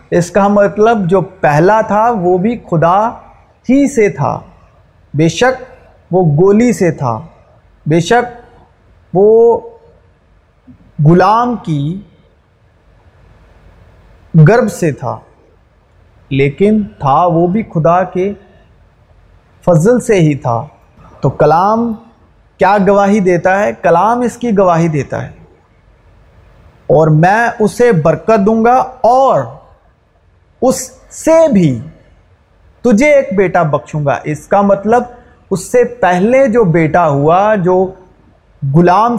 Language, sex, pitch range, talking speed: Urdu, male, 150-220 Hz, 115 wpm